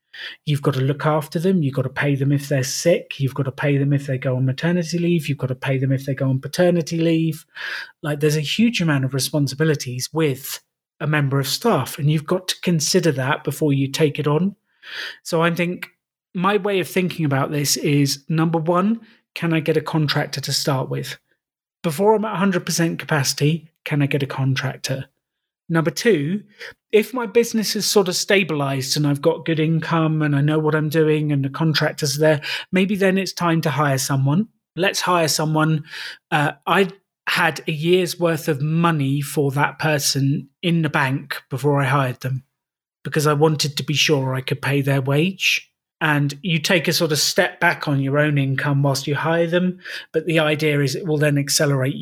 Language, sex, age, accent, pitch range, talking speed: English, male, 30-49, British, 140-170 Hz, 205 wpm